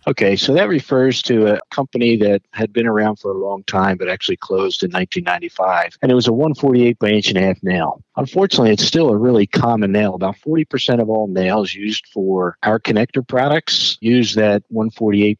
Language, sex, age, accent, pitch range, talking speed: English, male, 50-69, American, 100-125 Hz, 200 wpm